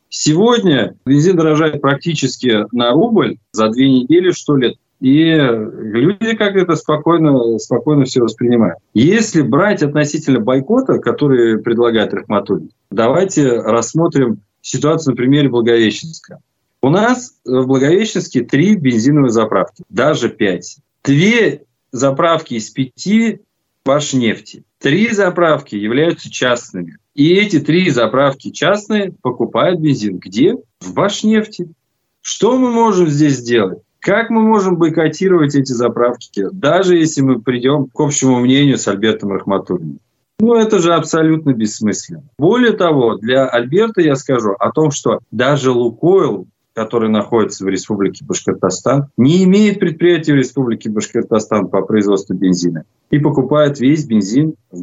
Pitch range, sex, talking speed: 120-165 Hz, male, 130 wpm